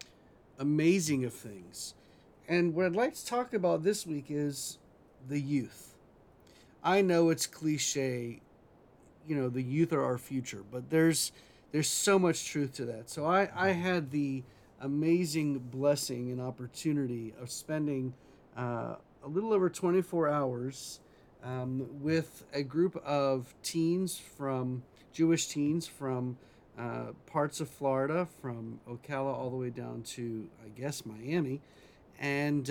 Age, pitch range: 40-59, 125-160 Hz